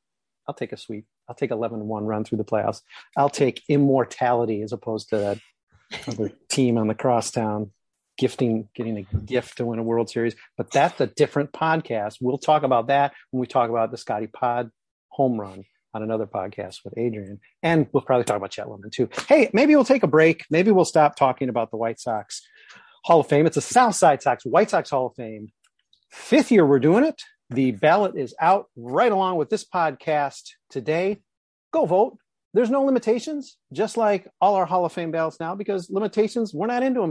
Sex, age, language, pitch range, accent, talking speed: male, 40-59, English, 120-185 Hz, American, 200 wpm